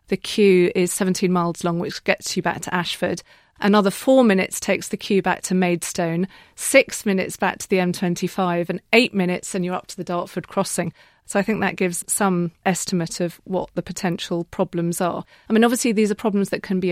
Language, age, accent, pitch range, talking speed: English, 40-59, British, 175-195 Hz, 210 wpm